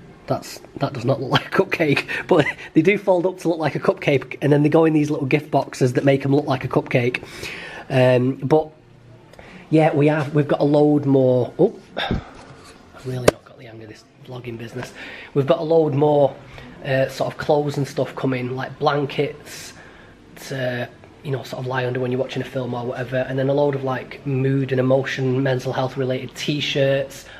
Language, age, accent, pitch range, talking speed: English, 20-39, British, 130-150 Hz, 210 wpm